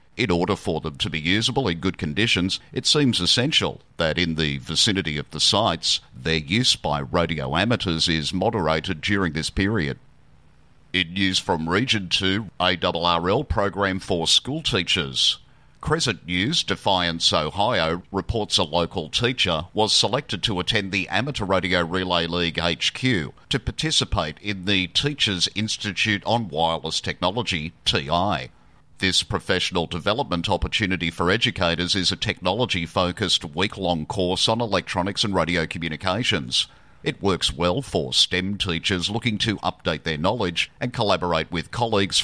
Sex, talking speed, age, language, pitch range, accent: male, 140 wpm, 50-69, English, 85-105 Hz, Australian